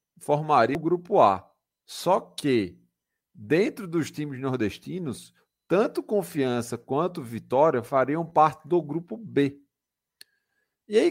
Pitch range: 125-195 Hz